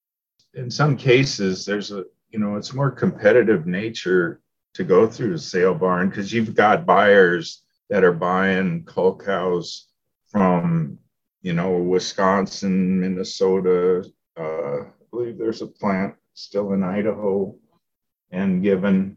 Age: 50-69